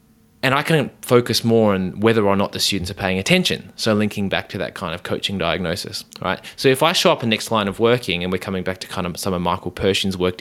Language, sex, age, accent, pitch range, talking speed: English, male, 20-39, Australian, 95-115 Hz, 270 wpm